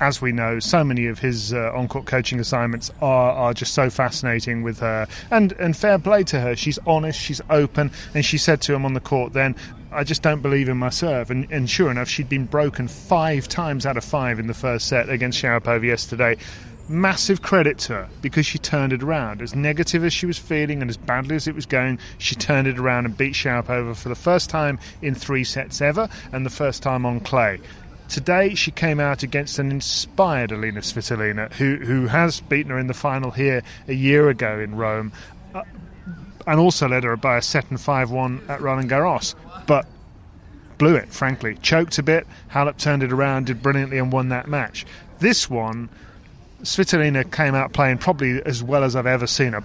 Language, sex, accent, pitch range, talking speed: English, male, British, 120-150 Hz, 210 wpm